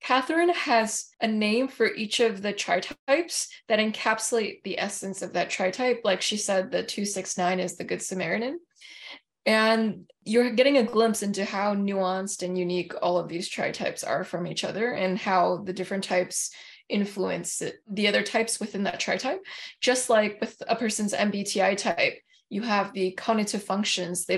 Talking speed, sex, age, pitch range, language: 165 wpm, female, 20-39, 190-230 Hz, English